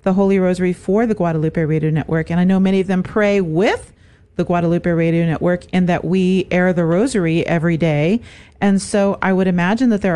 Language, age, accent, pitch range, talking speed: English, 40-59, American, 170-195 Hz, 205 wpm